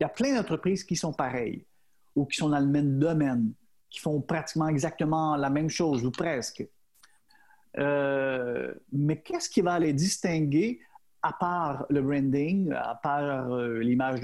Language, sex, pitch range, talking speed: French, male, 140-180 Hz, 160 wpm